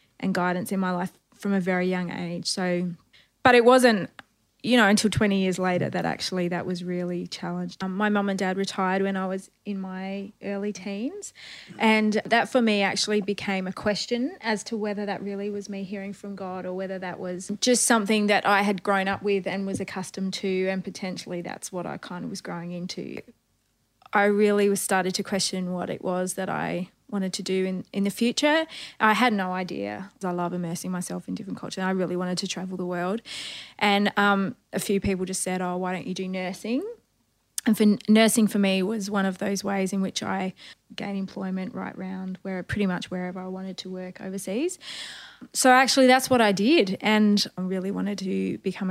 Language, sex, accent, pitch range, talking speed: English, female, Australian, 185-210 Hz, 210 wpm